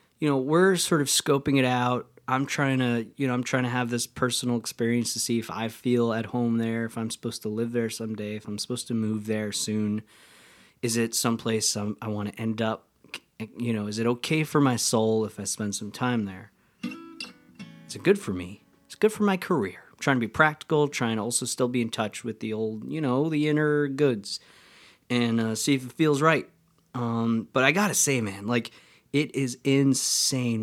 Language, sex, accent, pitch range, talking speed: English, male, American, 110-145 Hz, 220 wpm